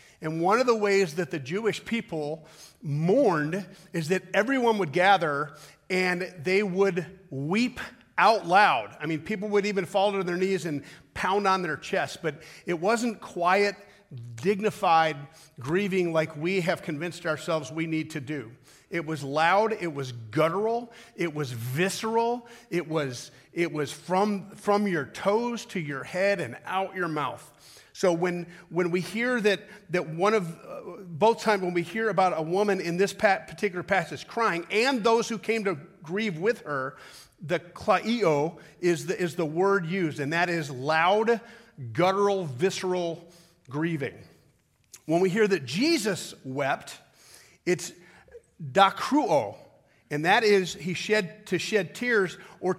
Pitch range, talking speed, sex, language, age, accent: 160-205 Hz, 155 wpm, male, English, 40-59, American